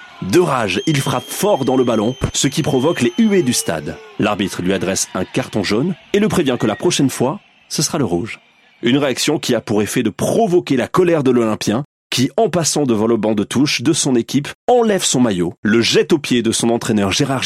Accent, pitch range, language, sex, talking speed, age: French, 105-150 Hz, French, male, 225 wpm, 30-49